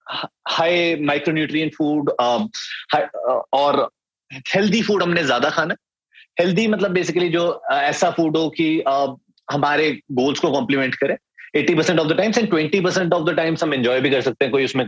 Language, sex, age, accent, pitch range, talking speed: Hindi, male, 30-49, native, 130-170 Hz, 80 wpm